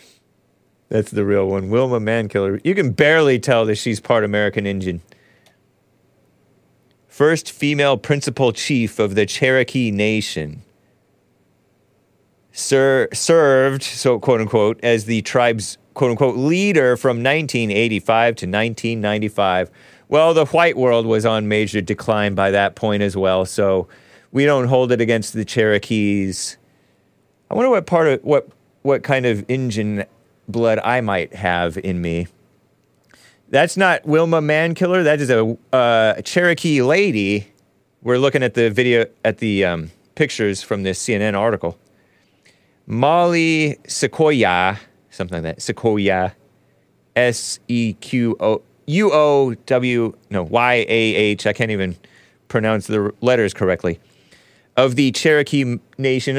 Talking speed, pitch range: 135 wpm, 105-135 Hz